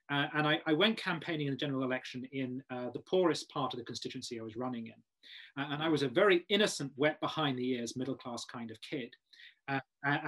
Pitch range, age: 130-170 Hz, 30-49